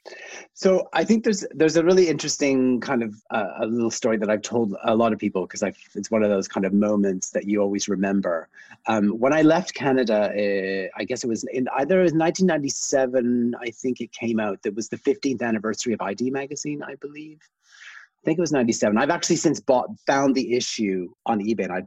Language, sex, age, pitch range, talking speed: English, male, 30-49, 105-140 Hz, 220 wpm